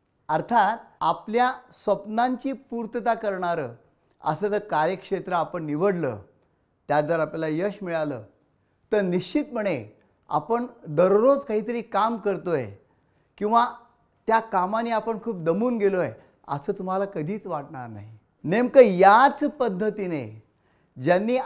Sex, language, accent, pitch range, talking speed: male, Marathi, native, 150-240 Hz, 110 wpm